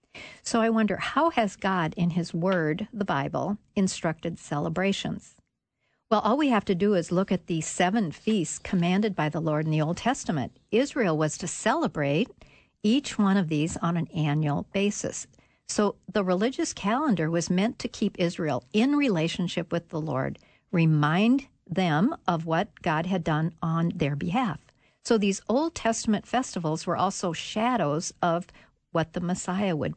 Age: 60-79